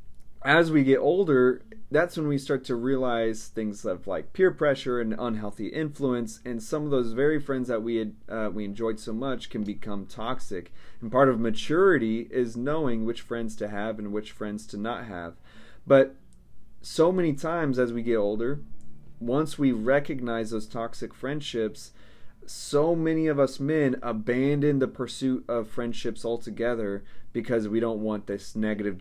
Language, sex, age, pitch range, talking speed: English, male, 30-49, 110-140 Hz, 165 wpm